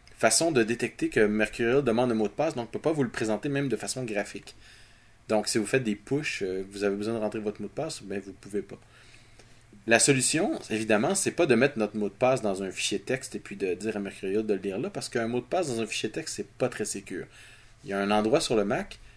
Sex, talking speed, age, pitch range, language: male, 280 wpm, 30-49, 105-135 Hz, French